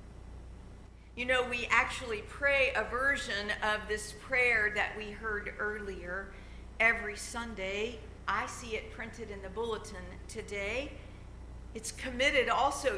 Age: 50-69